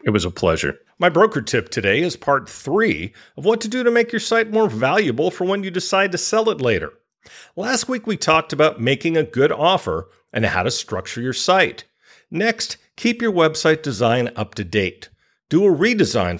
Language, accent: English, American